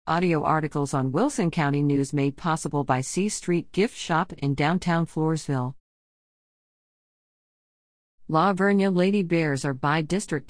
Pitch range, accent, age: 145-185 Hz, American, 40-59